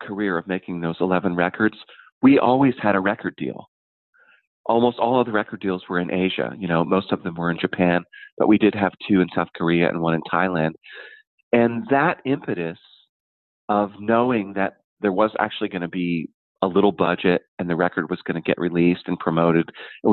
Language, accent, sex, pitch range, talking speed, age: English, American, male, 85-110 Hz, 200 wpm, 40-59